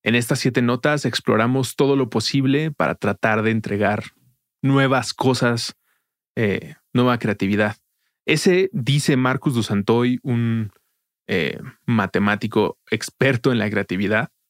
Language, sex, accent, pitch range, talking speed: Spanish, male, Mexican, 110-135 Hz, 120 wpm